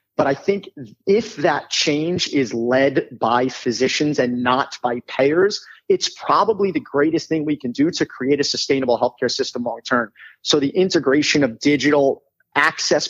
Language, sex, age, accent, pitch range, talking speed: English, male, 30-49, American, 135-165 Hz, 160 wpm